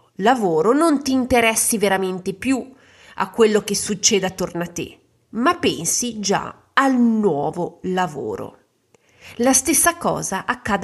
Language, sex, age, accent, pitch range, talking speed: Italian, female, 30-49, native, 160-205 Hz, 125 wpm